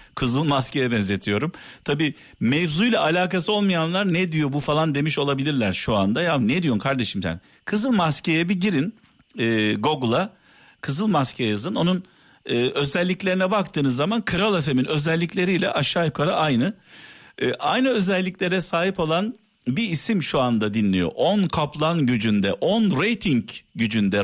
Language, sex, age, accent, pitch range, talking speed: Turkish, male, 50-69, native, 115-180 Hz, 140 wpm